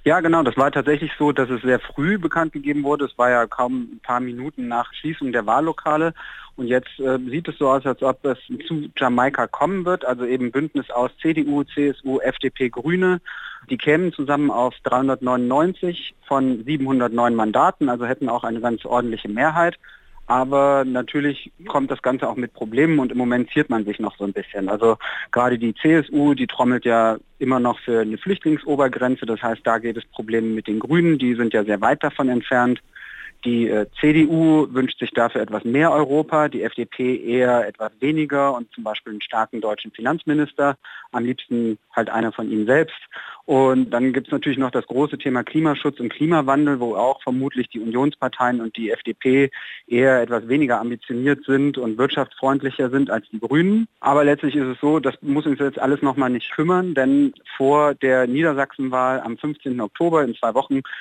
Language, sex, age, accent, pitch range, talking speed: German, male, 40-59, German, 120-145 Hz, 185 wpm